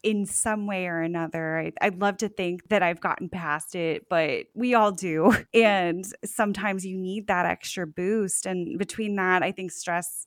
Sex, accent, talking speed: female, American, 180 wpm